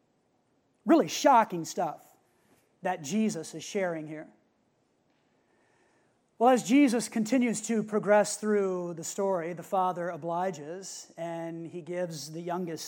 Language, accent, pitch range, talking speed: English, American, 175-215 Hz, 115 wpm